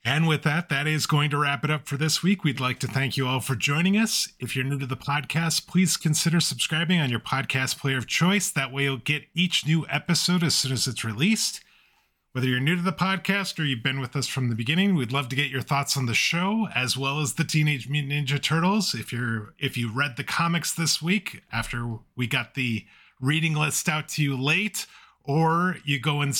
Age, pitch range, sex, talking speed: 30-49, 130-165 Hz, male, 235 wpm